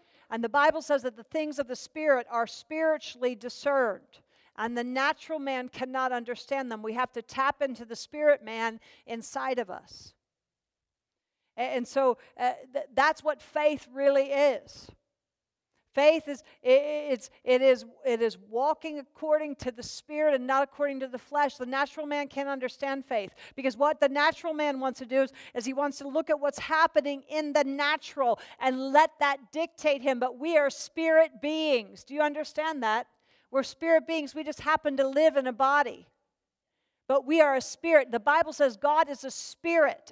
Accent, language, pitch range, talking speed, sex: American, English, 265-310 Hz, 180 wpm, female